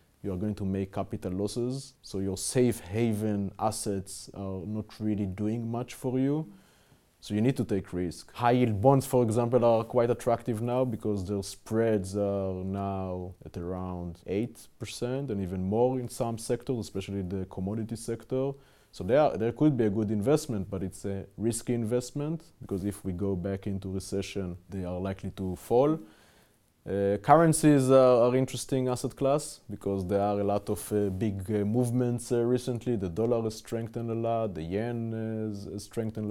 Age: 30-49